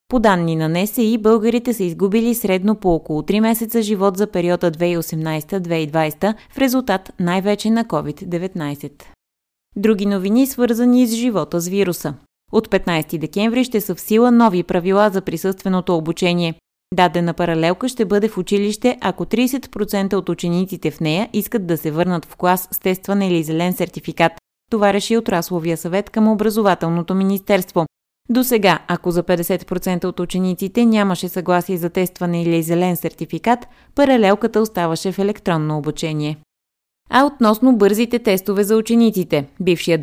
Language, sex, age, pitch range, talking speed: Bulgarian, female, 20-39, 170-215 Hz, 145 wpm